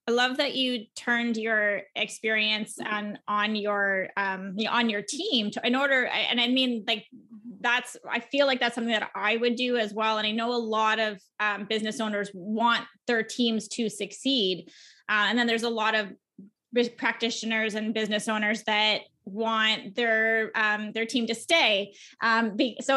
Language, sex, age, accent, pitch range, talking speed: English, female, 20-39, American, 210-240 Hz, 180 wpm